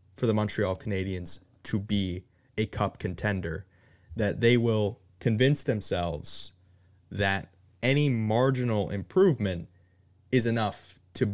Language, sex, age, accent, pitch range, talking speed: English, male, 20-39, American, 95-125 Hz, 110 wpm